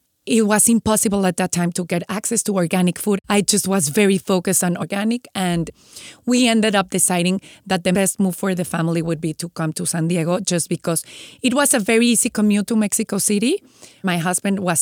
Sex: female